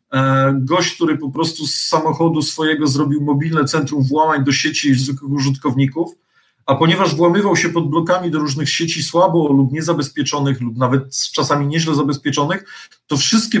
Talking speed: 150 wpm